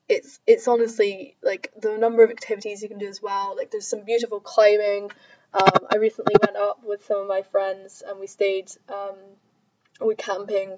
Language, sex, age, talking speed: English, female, 10-29, 190 wpm